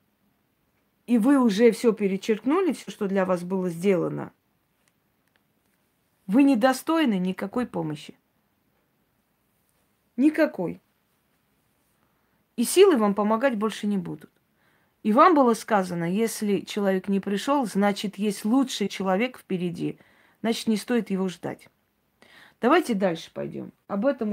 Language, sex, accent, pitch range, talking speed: Russian, female, native, 195-255 Hz, 115 wpm